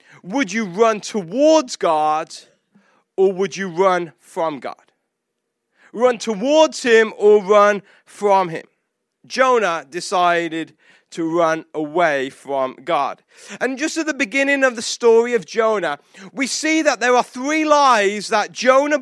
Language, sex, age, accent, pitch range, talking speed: English, male, 30-49, British, 195-255 Hz, 140 wpm